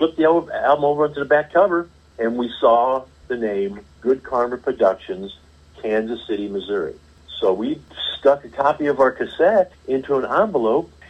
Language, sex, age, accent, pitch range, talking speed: English, male, 50-69, American, 90-145 Hz, 160 wpm